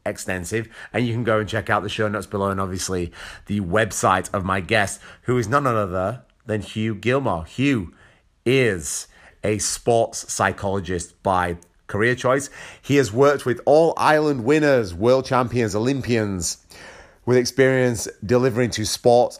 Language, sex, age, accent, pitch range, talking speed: English, male, 30-49, British, 95-120 Hz, 150 wpm